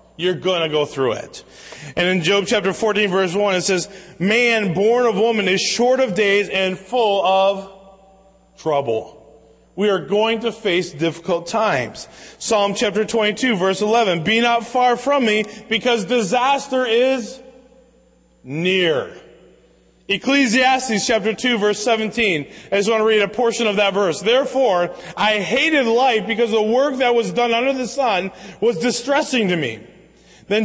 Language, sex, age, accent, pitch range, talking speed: English, male, 30-49, American, 205-255 Hz, 155 wpm